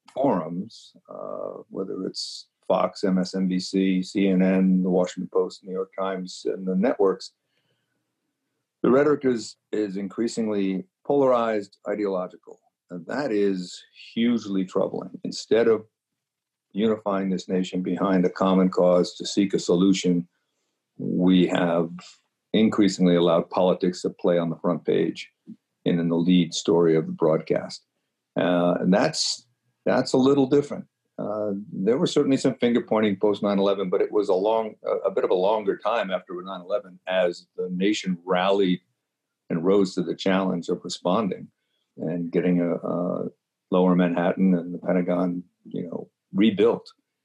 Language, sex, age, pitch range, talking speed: English, male, 50-69, 90-110 Hz, 140 wpm